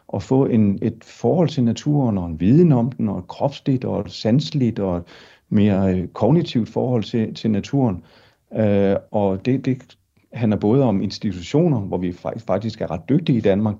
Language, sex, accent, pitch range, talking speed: Danish, male, native, 100-130 Hz, 185 wpm